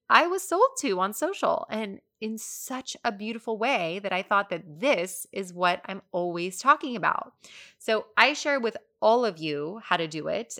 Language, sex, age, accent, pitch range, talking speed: English, female, 20-39, American, 165-220 Hz, 190 wpm